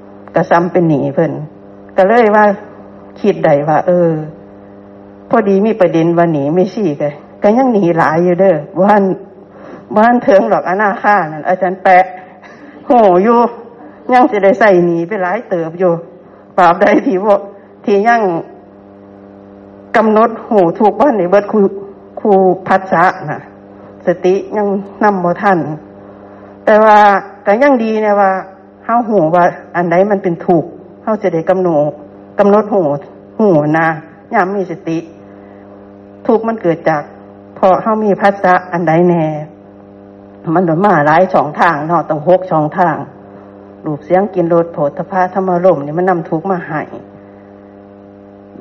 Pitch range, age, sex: 145-195 Hz, 60-79, female